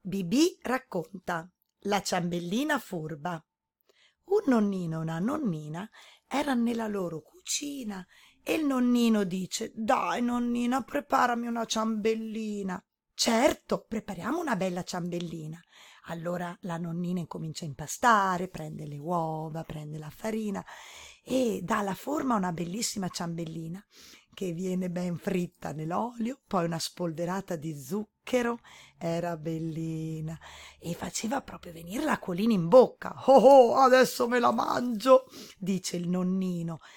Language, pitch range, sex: Italian, 175-240 Hz, female